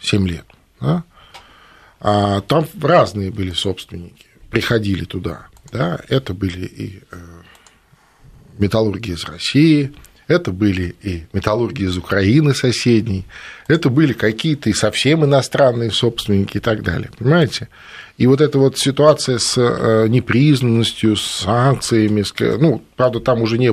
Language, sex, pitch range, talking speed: Russian, male, 95-120 Hz, 125 wpm